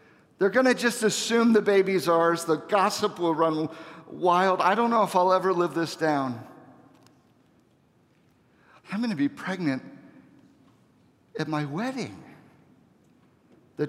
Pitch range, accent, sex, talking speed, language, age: 130-200 Hz, American, male, 125 wpm, English, 50-69